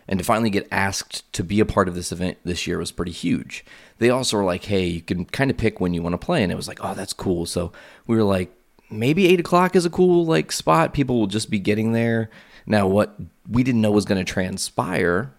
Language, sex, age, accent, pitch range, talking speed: English, male, 30-49, American, 95-115 Hz, 255 wpm